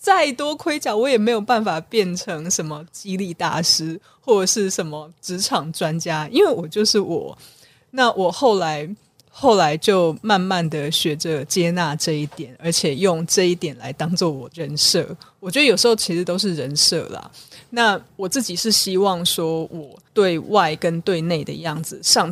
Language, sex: Chinese, female